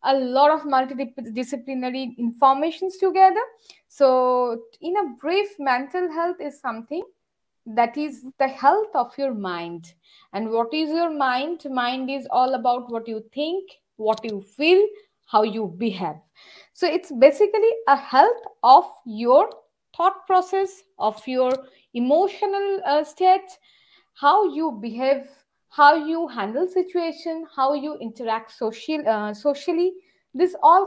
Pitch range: 245-355 Hz